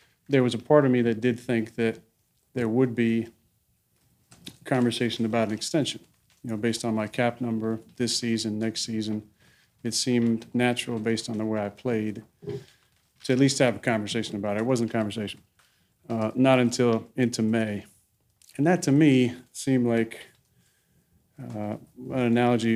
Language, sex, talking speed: English, male, 165 wpm